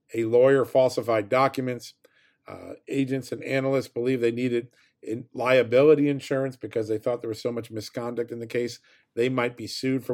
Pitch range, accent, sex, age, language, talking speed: 115-140 Hz, American, male, 50-69, English, 170 wpm